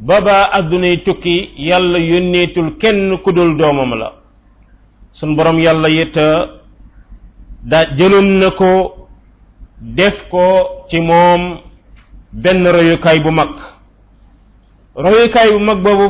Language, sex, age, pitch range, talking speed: French, male, 50-69, 125-190 Hz, 85 wpm